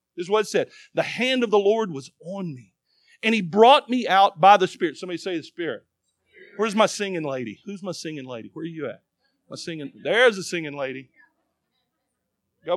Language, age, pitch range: English, 40-59, 155-240 Hz